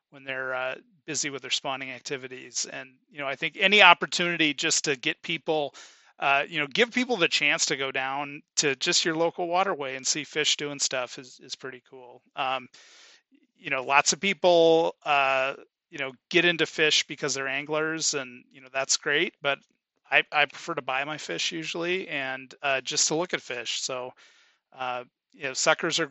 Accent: American